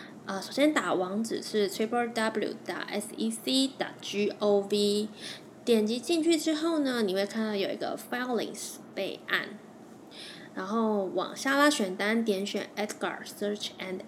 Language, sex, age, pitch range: Chinese, female, 20-39, 200-265 Hz